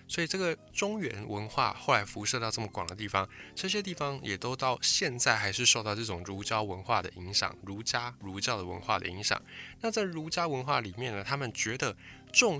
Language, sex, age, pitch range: Chinese, male, 20-39, 100-135 Hz